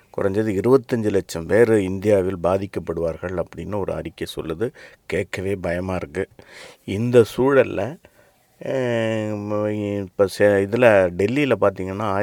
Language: Tamil